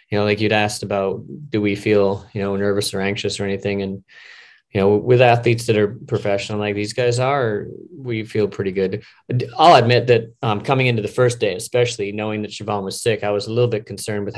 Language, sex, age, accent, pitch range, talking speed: English, male, 30-49, American, 100-115 Hz, 225 wpm